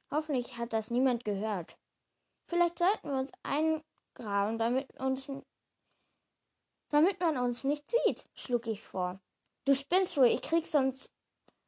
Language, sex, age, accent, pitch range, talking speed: German, female, 10-29, German, 230-290 Hz, 135 wpm